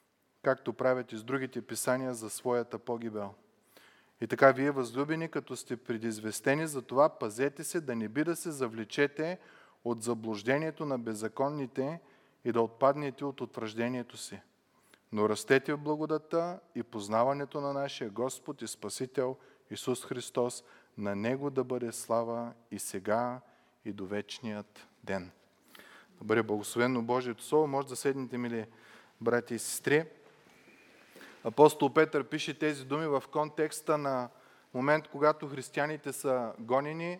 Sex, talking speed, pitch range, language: male, 135 wpm, 120-145 Hz, Bulgarian